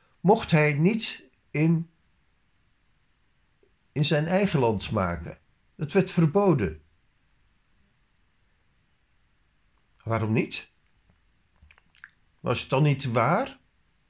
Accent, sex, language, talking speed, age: Dutch, male, Dutch, 80 wpm, 50-69